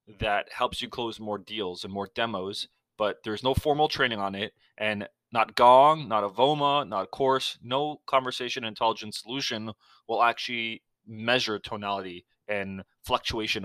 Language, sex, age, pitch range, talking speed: English, male, 20-39, 110-145 Hz, 155 wpm